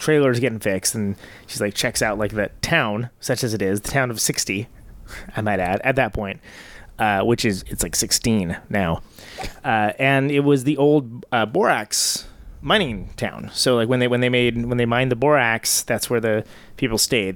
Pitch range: 105-135 Hz